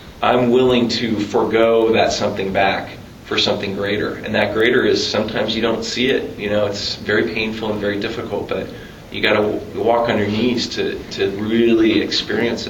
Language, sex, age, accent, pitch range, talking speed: English, male, 40-59, American, 105-125 Hz, 190 wpm